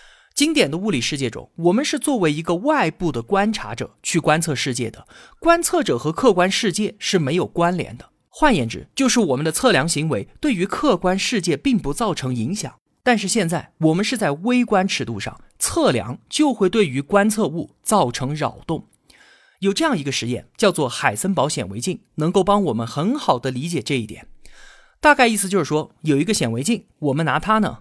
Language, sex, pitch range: Chinese, male, 145-235 Hz